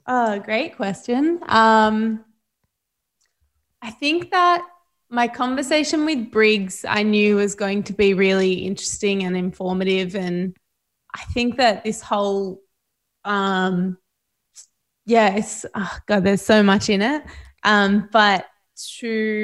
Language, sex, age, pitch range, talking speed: English, female, 20-39, 190-215 Hz, 125 wpm